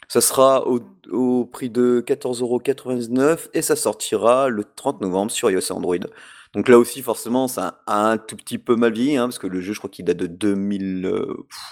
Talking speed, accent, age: 200 wpm, French, 30-49